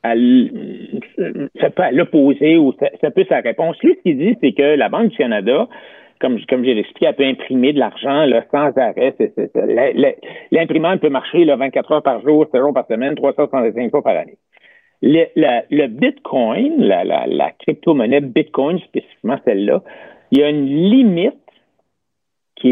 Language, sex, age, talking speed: French, male, 60-79, 170 wpm